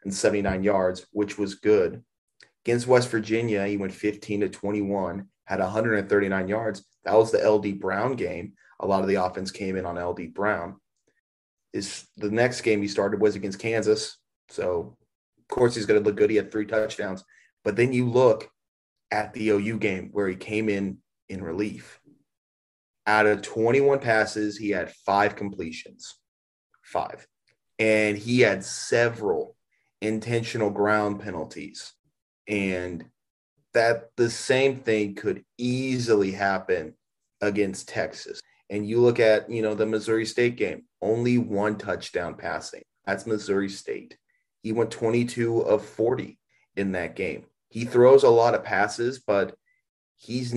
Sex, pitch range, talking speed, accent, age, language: male, 100-115 Hz, 150 wpm, American, 30-49, English